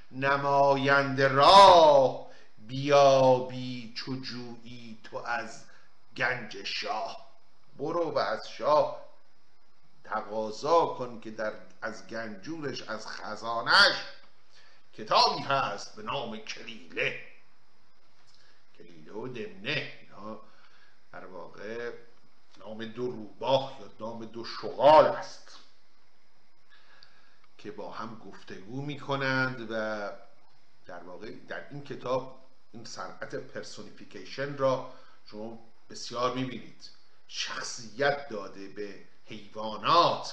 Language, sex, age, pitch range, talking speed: Persian, male, 50-69, 110-145 Hz, 95 wpm